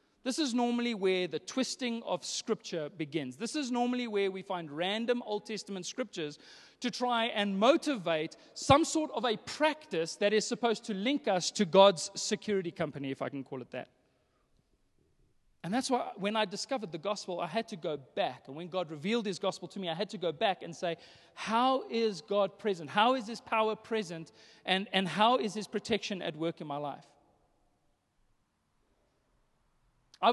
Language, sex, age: English, male, 30-49